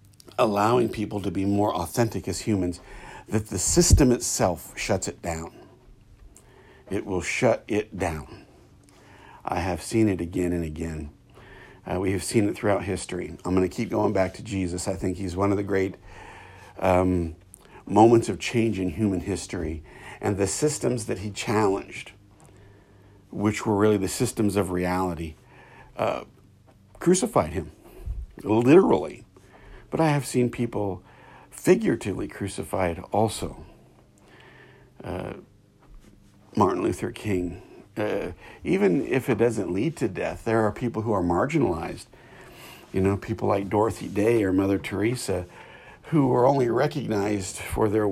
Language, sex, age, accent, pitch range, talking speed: English, male, 60-79, American, 95-115 Hz, 145 wpm